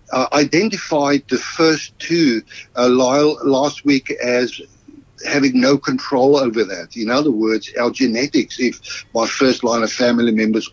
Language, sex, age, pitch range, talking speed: English, male, 60-79, 115-145 Hz, 145 wpm